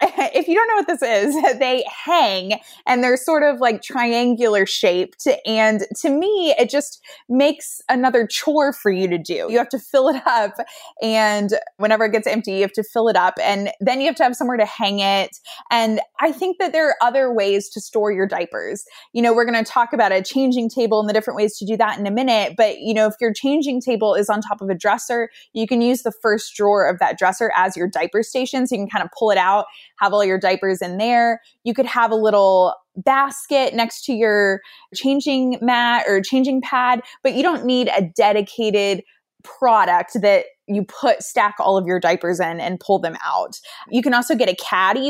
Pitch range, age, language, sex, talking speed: 200-255 Hz, 20-39, English, female, 220 wpm